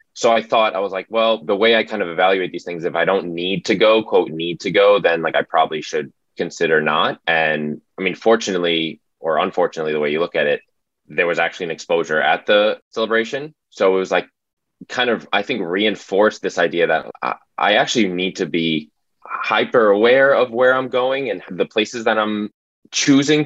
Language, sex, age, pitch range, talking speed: English, male, 10-29, 85-125 Hz, 210 wpm